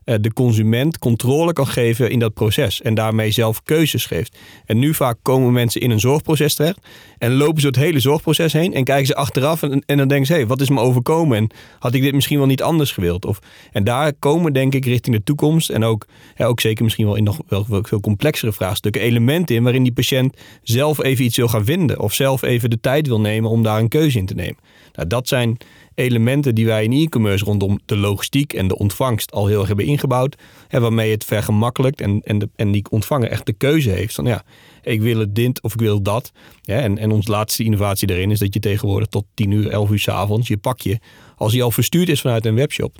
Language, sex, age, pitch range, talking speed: Dutch, male, 40-59, 110-135 Hz, 230 wpm